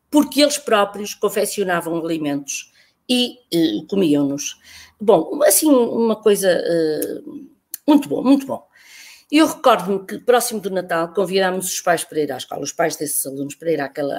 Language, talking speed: Portuguese, 155 wpm